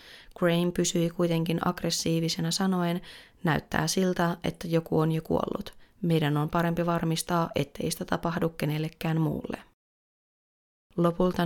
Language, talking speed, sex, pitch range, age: Finnish, 115 wpm, female, 165-180 Hz, 30-49